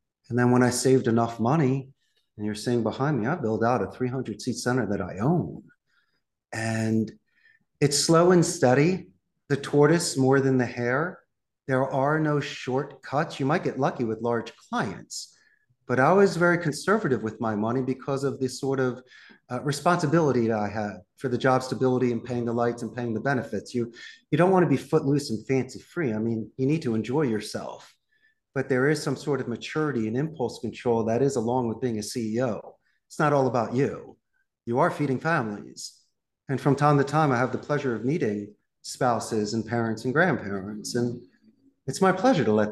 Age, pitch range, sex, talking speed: 40-59, 115-140 Hz, male, 195 wpm